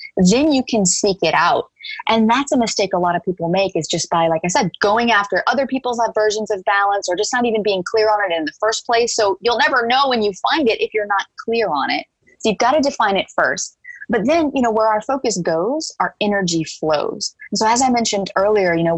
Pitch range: 180-250 Hz